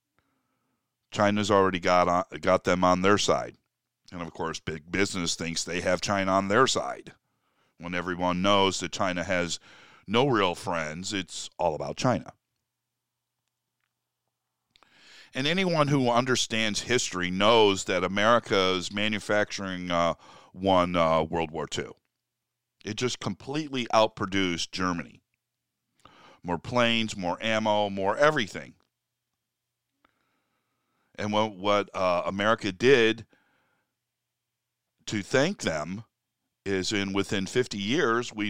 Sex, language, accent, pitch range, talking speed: male, English, American, 95-120 Hz, 115 wpm